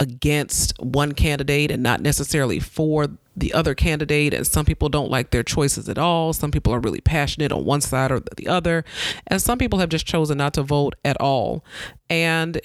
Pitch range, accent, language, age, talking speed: 135-160 Hz, American, English, 30-49, 200 wpm